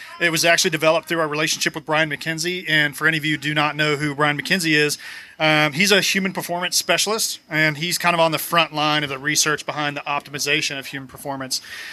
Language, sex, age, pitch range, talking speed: English, male, 30-49, 150-175 Hz, 230 wpm